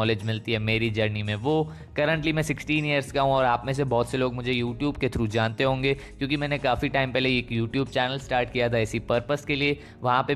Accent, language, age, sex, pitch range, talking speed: native, Hindi, 20-39, male, 120-140 Hz, 250 wpm